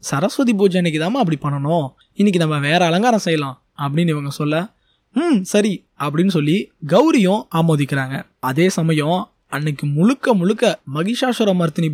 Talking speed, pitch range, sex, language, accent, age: 130 wpm, 155-210 Hz, male, Tamil, native, 20-39